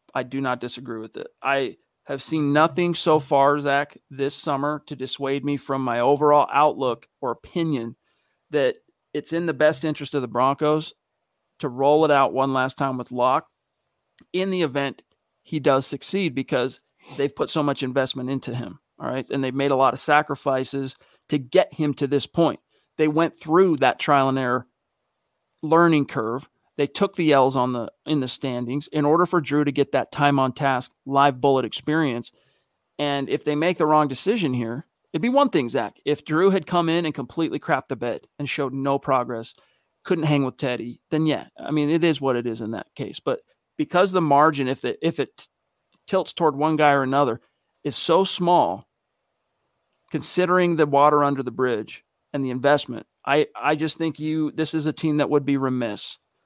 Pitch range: 135-155 Hz